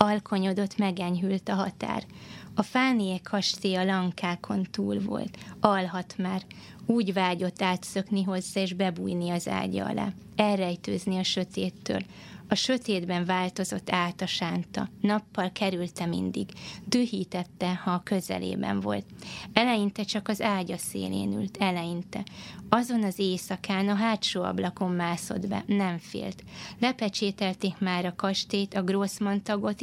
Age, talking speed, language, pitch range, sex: 20-39, 125 wpm, Hungarian, 180-205 Hz, female